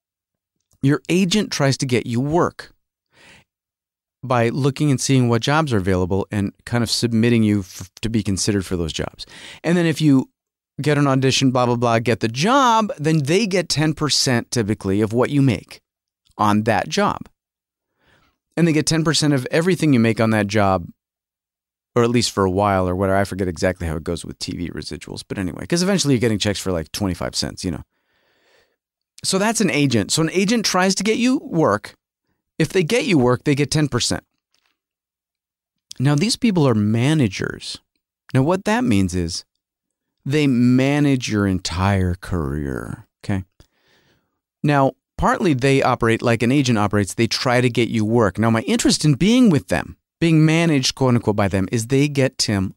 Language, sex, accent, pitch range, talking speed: English, male, American, 100-150 Hz, 180 wpm